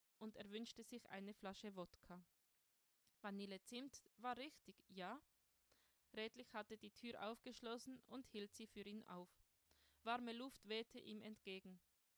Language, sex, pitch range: German, female, 200-235 Hz